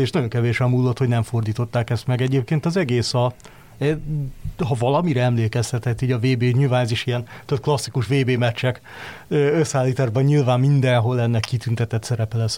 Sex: male